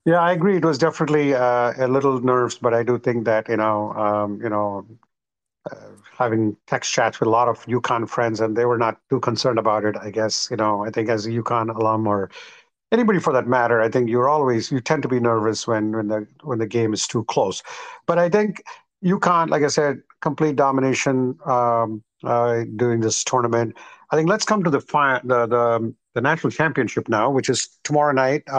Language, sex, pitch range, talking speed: English, male, 120-145 Hz, 215 wpm